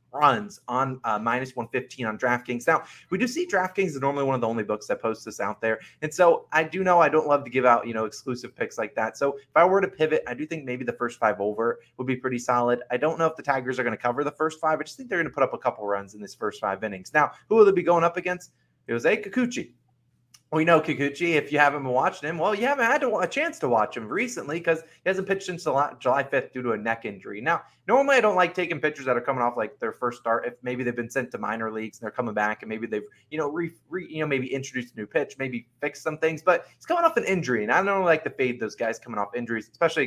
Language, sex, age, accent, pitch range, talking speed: English, male, 20-39, American, 120-160 Hz, 295 wpm